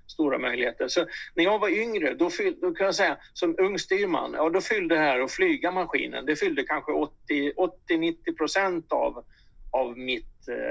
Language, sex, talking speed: Swedish, male, 175 wpm